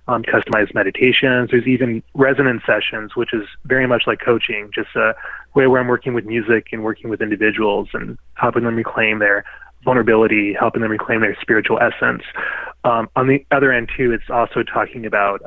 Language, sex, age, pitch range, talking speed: English, male, 20-39, 110-125 Hz, 180 wpm